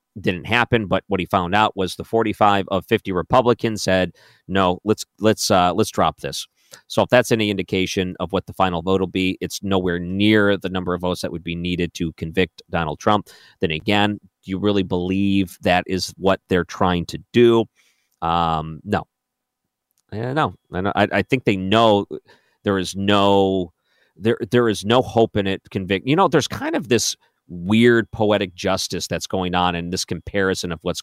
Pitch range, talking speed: 90-105 Hz, 190 wpm